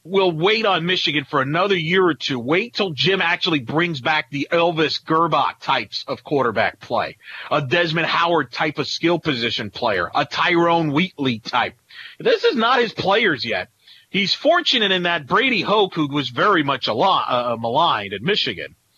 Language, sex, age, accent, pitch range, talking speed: English, male, 40-59, American, 130-175 Hz, 175 wpm